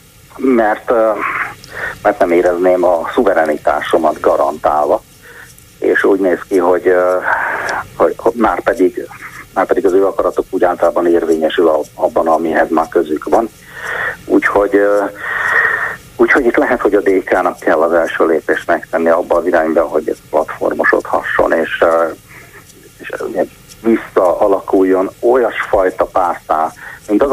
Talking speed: 115 wpm